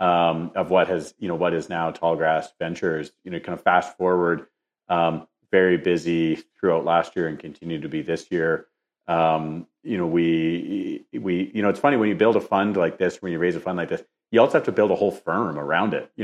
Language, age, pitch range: English, 40-59, 80-95 Hz